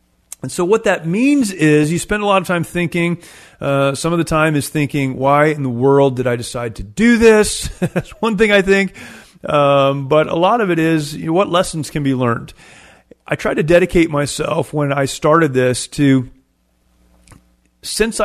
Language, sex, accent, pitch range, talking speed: English, male, American, 135-160 Hz, 190 wpm